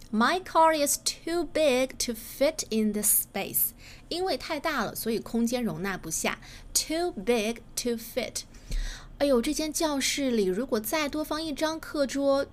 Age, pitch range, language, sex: 20-39, 215-305 Hz, Chinese, female